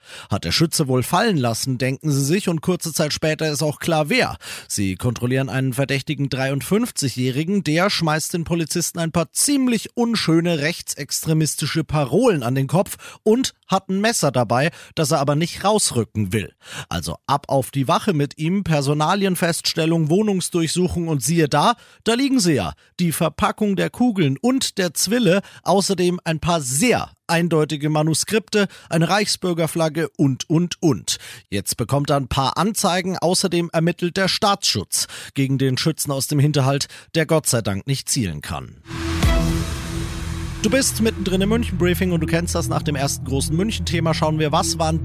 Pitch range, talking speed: 135-180 Hz, 160 wpm